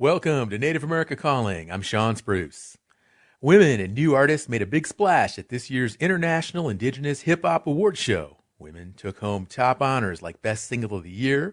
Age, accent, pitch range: 40-59, American, 115-160 Hz